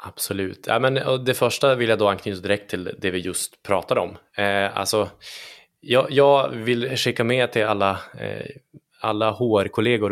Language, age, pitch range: Swedish, 20-39, 100-120 Hz